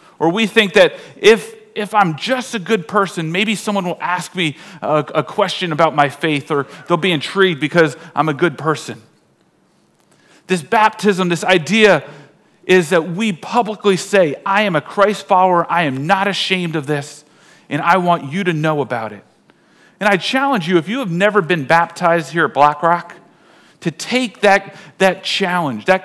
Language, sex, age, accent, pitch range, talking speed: English, male, 40-59, American, 155-200 Hz, 180 wpm